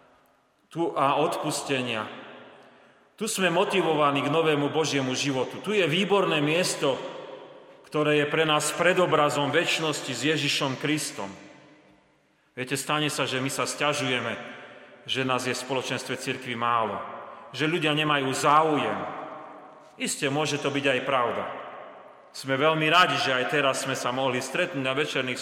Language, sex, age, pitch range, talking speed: Slovak, male, 40-59, 130-160 Hz, 135 wpm